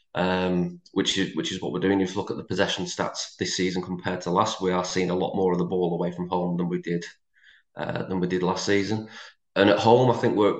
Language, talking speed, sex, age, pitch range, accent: English, 265 wpm, male, 20-39, 90-105 Hz, British